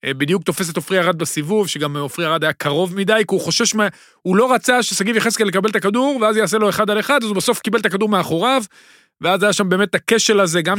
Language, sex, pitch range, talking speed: Hebrew, male, 165-220 Hz, 245 wpm